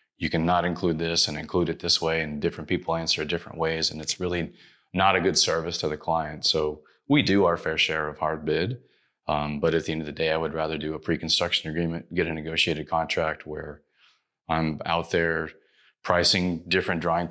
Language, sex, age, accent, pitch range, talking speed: English, male, 30-49, American, 75-85 Hz, 210 wpm